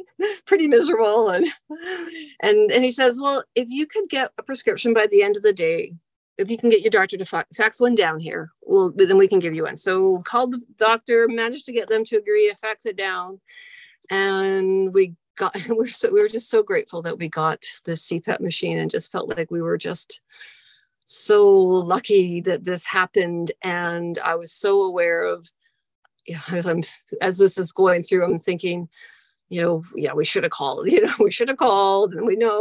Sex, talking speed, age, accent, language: female, 210 wpm, 40-59, American, English